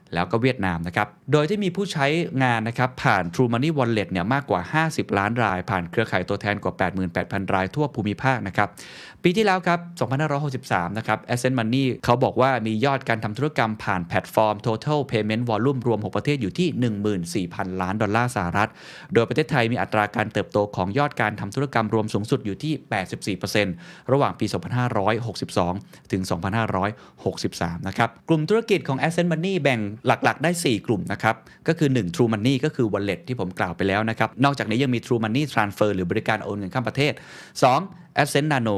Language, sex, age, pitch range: Thai, male, 20-39, 100-135 Hz